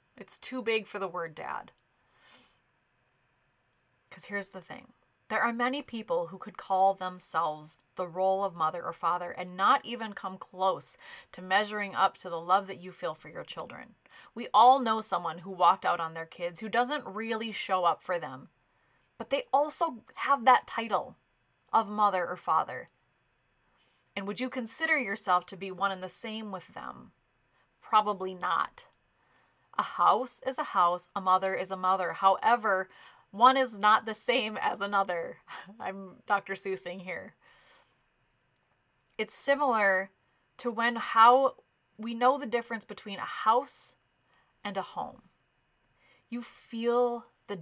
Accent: American